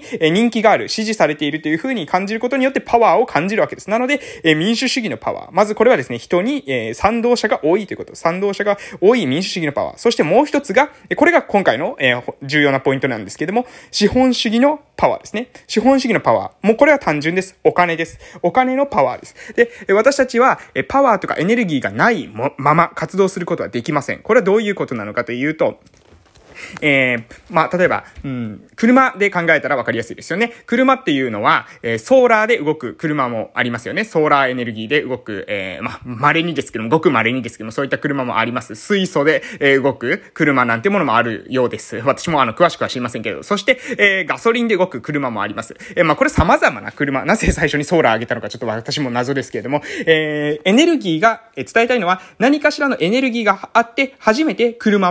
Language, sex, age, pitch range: Japanese, male, 20-39, 145-235 Hz